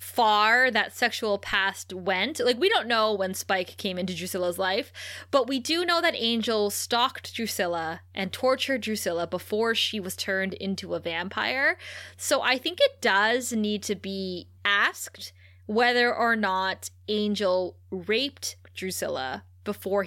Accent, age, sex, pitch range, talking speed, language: American, 20-39, female, 185-235 Hz, 145 wpm, English